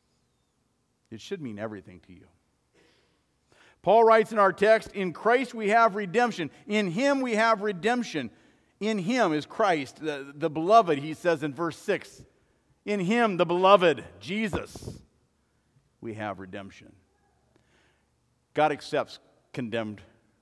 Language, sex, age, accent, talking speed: English, male, 50-69, American, 130 wpm